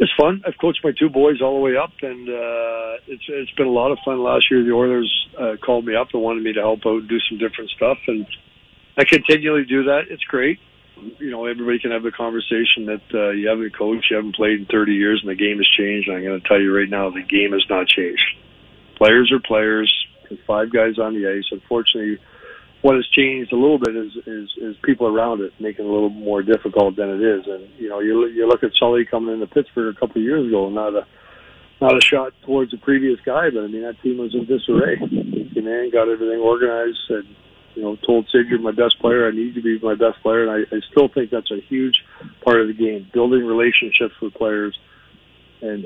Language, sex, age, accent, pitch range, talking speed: English, male, 50-69, American, 105-120 Hz, 235 wpm